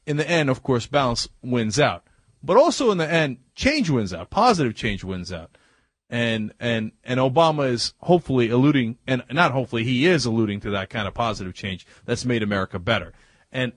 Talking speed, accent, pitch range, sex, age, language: 190 wpm, American, 120-185 Hz, male, 30-49, English